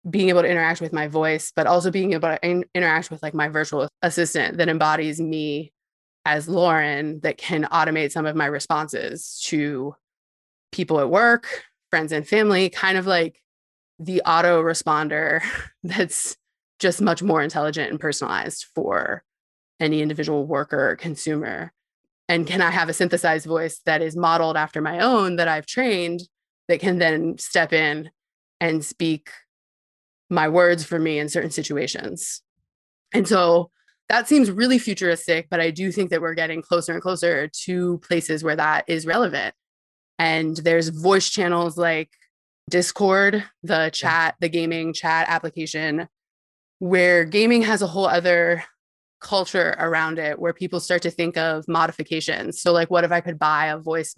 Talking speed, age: 160 wpm, 20-39